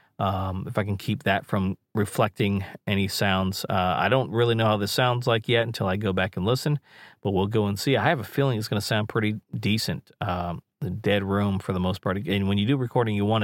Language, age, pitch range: English, 40-59, 100-120 Hz